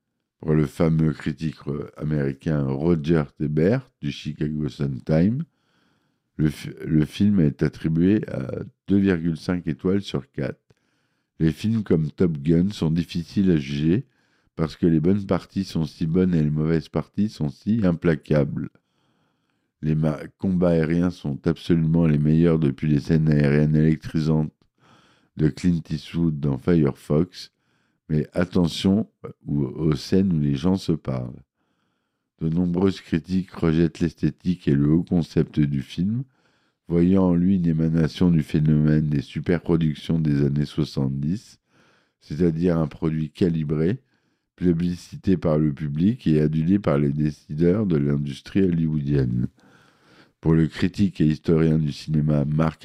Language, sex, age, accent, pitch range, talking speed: French, male, 50-69, French, 75-90 Hz, 135 wpm